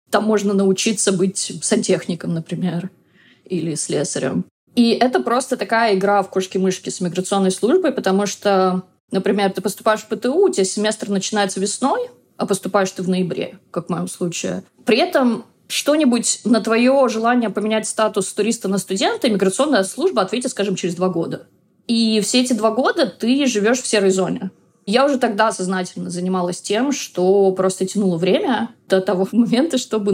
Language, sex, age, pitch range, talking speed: Russian, female, 20-39, 185-230 Hz, 160 wpm